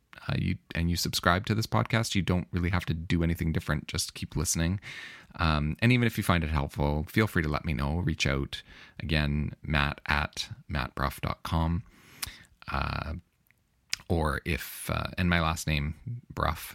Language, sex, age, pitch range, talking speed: English, male, 30-49, 75-95 Hz, 170 wpm